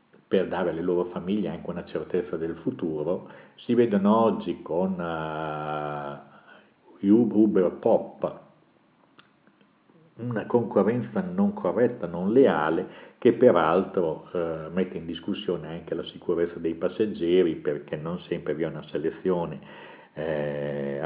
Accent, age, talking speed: native, 50-69, 120 wpm